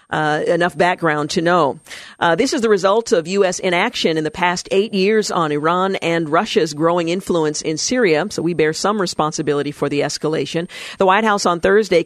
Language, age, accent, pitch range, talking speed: English, 50-69, American, 160-195 Hz, 195 wpm